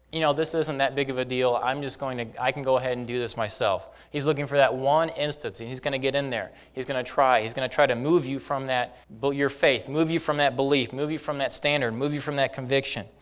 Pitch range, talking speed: 125-145 Hz, 290 wpm